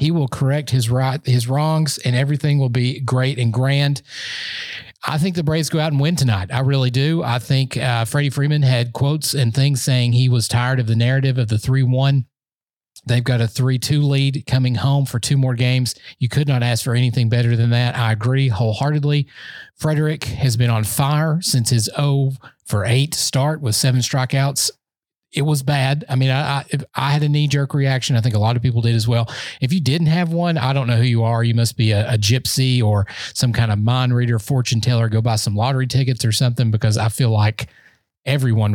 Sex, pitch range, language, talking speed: male, 120-140 Hz, English, 215 wpm